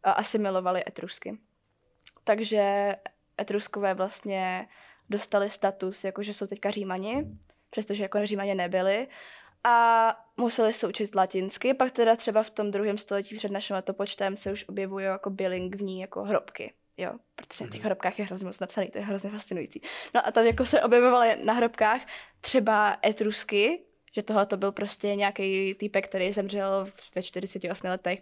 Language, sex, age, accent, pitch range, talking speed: Czech, female, 10-29, native, 195-230 Hz, 150 wpm